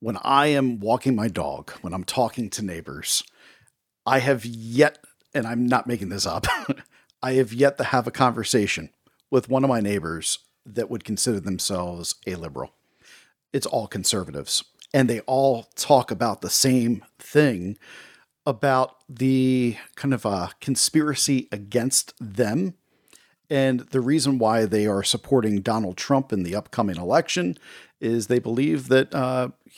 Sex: male